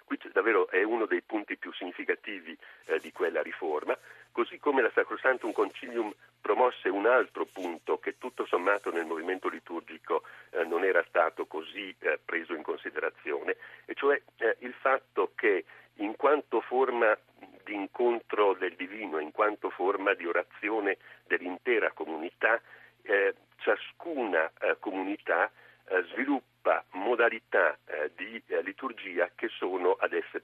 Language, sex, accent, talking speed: Italian, male, native, 135 wpm